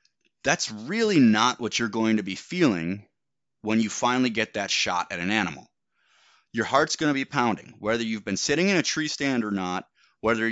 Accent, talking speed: American, 200 wpm